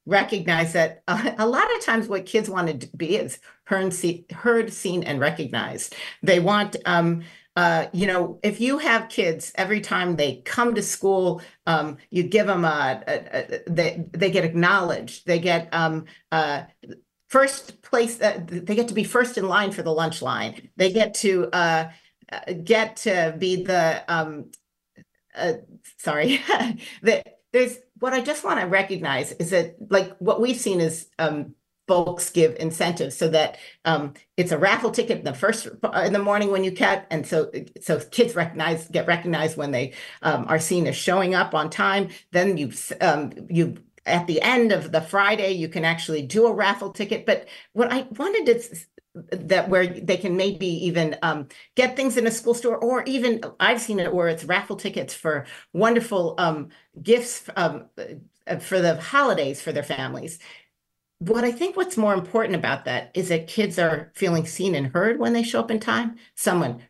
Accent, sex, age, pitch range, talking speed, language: American, female, 50-69, 165-225 Hz, 180 wpm, English